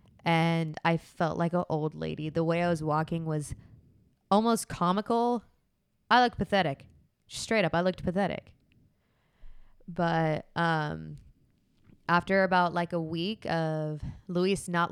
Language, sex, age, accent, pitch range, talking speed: English, female, 20-39, American, 155-180 Hz, 135 wpm